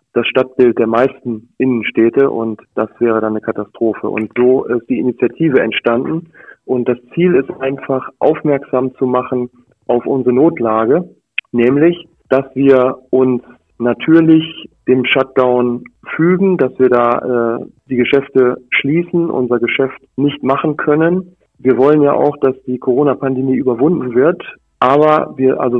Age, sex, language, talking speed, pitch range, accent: 40-59, male, German, 140 wpm, 120-140 Hz, German